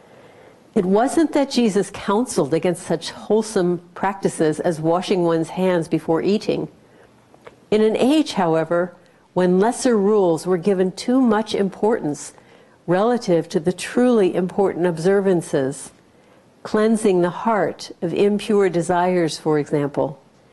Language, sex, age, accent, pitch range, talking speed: English, female, 60-79, American, 175-220 Hz, 120 wpm